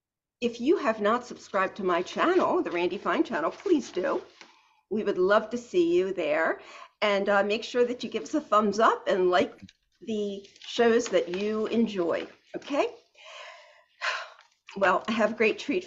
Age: 50-69